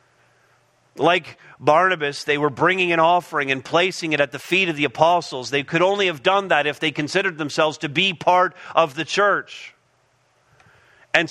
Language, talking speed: English, 175 wpm